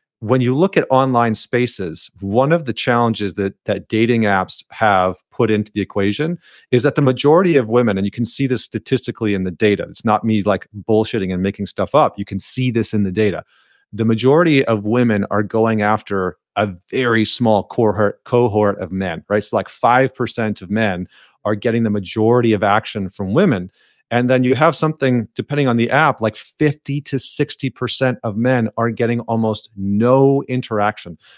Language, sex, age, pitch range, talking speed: English, male, 30-49, 105-130 Hz, 185 wpm